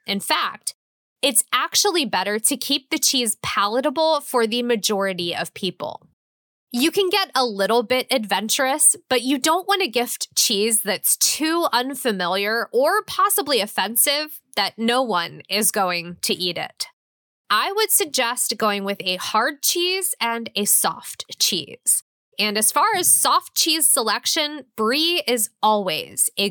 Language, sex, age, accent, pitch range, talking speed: English, female, 20-39, American, 210-315 Hz, 150 wpm